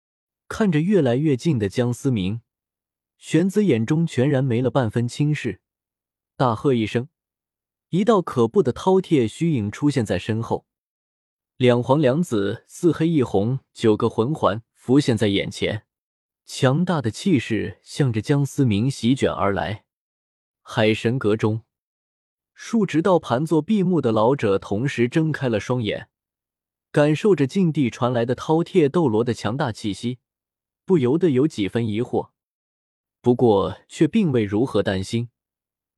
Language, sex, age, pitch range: Chinese, male, 20-39, 110-155 Hz